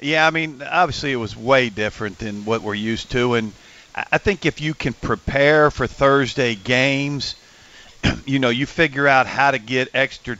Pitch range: 115-140 Hz